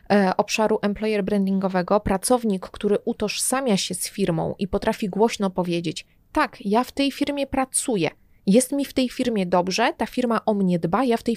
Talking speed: 175 wpm